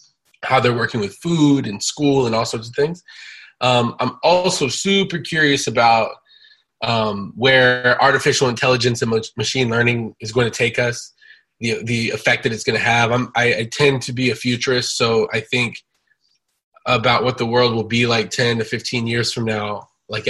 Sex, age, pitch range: male, 20-39, 110-130 Hz